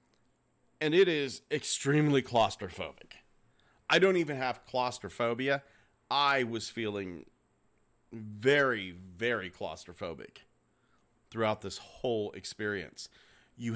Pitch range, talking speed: 105-135 Hz, 90 wpm